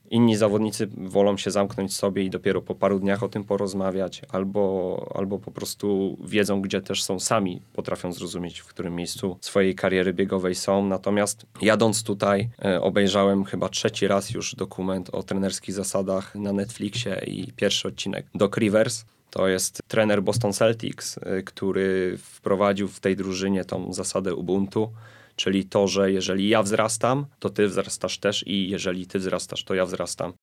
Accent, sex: native, male